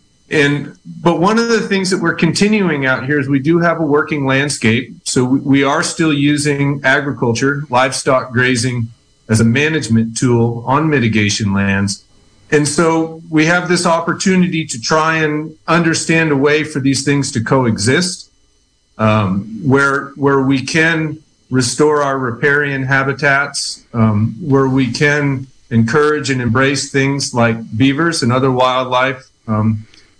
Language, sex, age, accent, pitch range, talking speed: English, male, 40-59, American, 125-155 Hz, 145 wpm